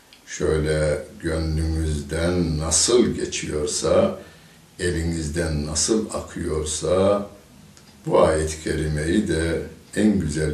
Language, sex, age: Turkish, male, 60-79